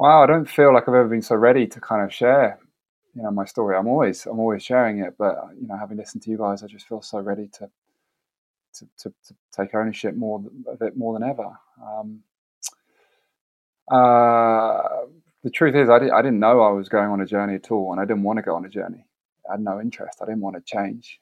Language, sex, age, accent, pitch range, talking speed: English, male, 20-39, British, 100-115 Hz, 240 wpm